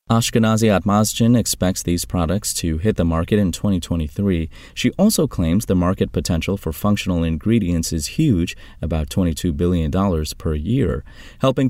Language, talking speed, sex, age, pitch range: English, 145 wpm, male, 30-49, 80-105 Hz